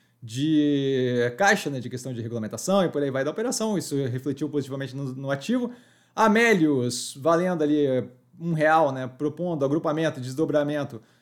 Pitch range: 140-170 Hz